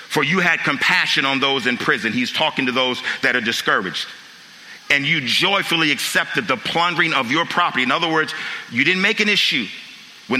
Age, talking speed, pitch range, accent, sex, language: 50-69, 190 wpm, 160-200 Hz, American, male, English